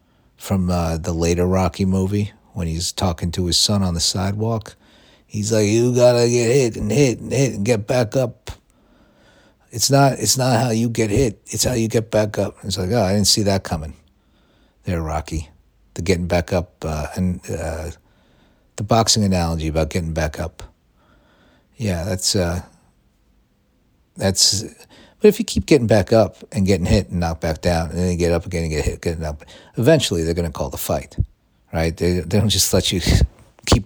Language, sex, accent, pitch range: English, male, American, 85-110 Hz